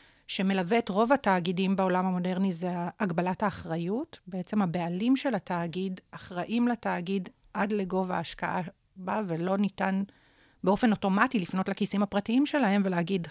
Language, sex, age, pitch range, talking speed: Hebrew, female, 40-59, 185-225 Hz, 125 wpm